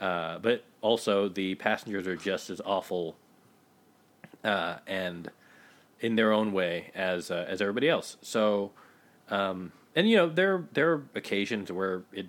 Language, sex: English, male